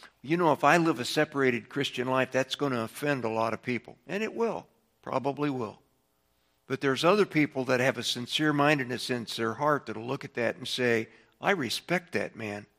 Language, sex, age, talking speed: English, male, 60-79, 205 wpm